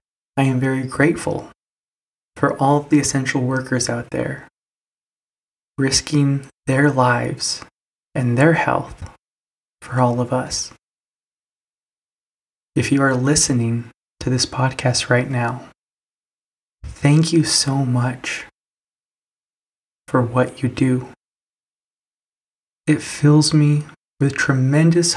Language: English